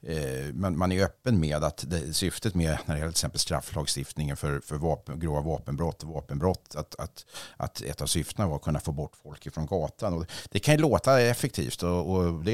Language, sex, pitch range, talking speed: English, male, 80-110 Hz, 195 wpm